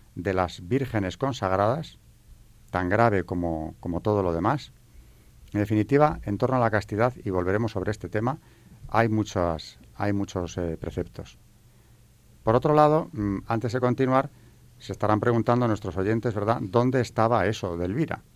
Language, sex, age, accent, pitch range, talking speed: Spanish, male, 40-59, Spanish, 90-115 Hz, 145 wpm